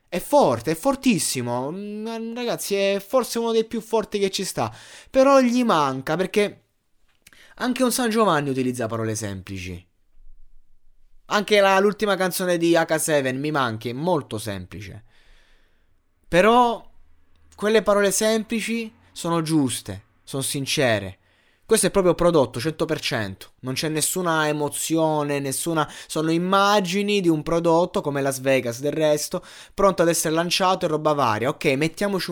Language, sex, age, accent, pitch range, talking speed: Italian, male, 20-39, native, 115-175 Hz, 135 wpm